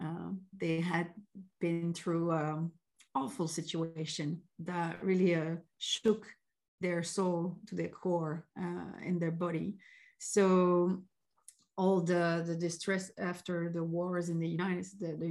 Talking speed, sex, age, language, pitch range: 135 wpm, female, 40-59, English, 170-200 Hz